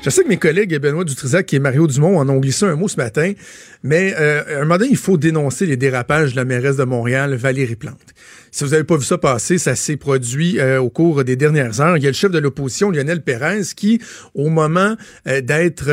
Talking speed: 240 wpm